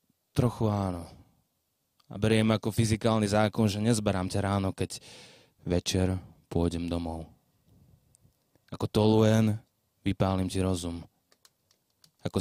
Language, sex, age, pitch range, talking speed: Slovak, male, 20-39, 95-120 Hz, 100 wpm